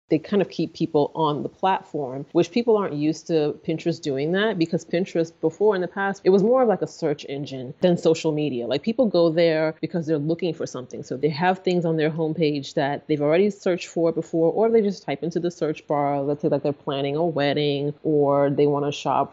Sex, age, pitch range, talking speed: female, 30-49, 150-185 Hz, 235 wpm